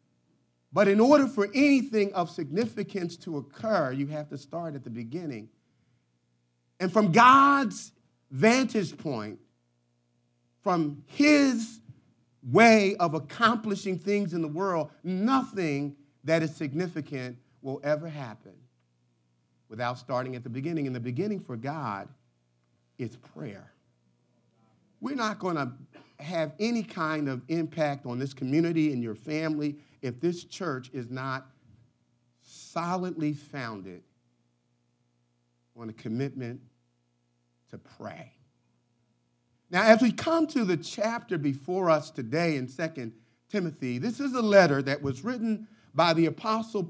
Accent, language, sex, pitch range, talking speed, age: American, English, male, 115-185 Hz, 125 wpm, 40-59